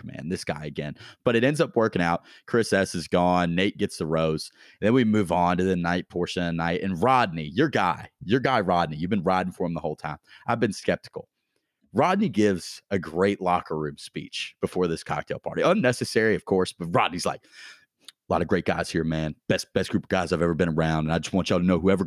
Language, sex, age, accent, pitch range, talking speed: English, male, 30-49, American, 90-125 Hz, 240 wpm